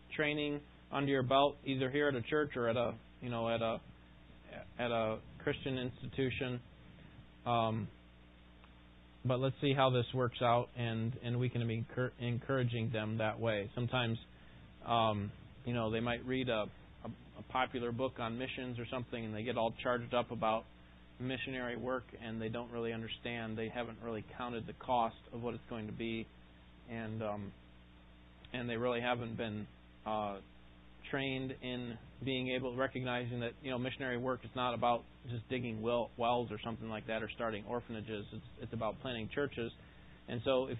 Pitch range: 110-130 Hz